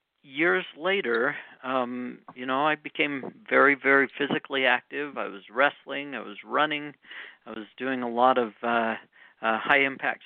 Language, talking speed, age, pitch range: English, 160 wpm, 50-69, 125-150 Hz